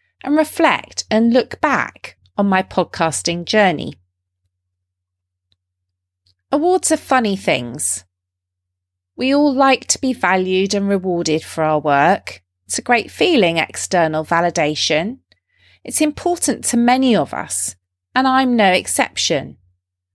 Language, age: English, 30-49